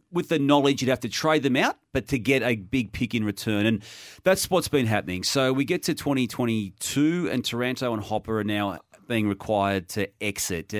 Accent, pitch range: Australian, 110-145 Hz